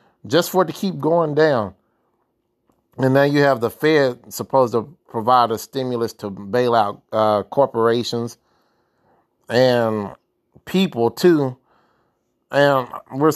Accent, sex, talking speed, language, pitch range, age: American, male, 125 wpm, English, 115-140 Hz, 30-49